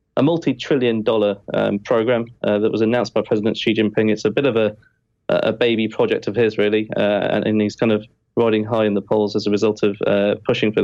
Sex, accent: male, British